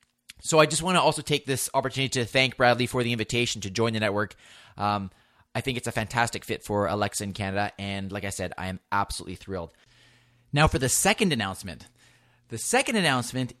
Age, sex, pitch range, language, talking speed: 30-49, male, 115-140 Hz, English, 205 wpm